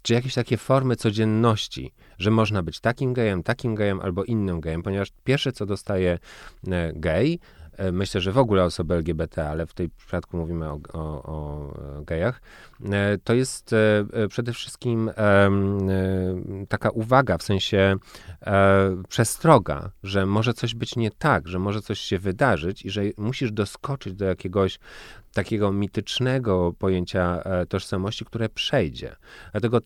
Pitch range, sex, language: 85-110 Hz, male, Polish